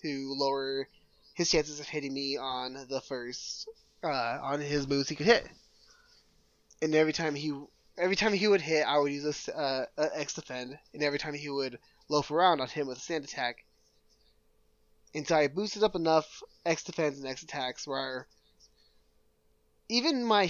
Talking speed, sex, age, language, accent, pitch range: 180 wpm, male, 20-39, English, American, 140-180 Hz